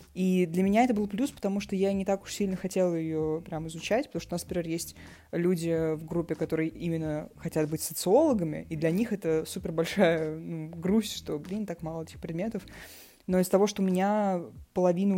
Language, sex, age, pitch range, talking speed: Russian, female, 20-39, 165-200 Hz, 205 wpm